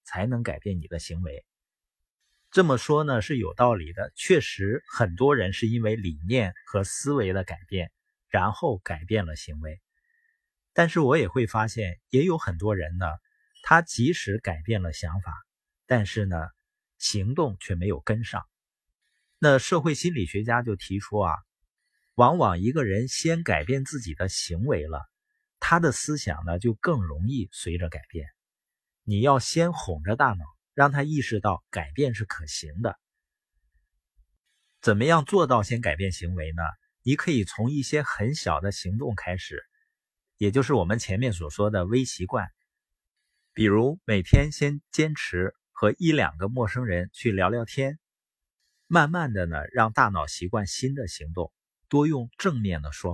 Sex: male